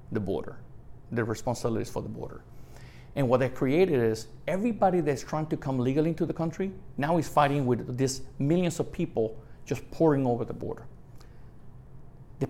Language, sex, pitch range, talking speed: English, male, 125-160 Hz, 170 wpm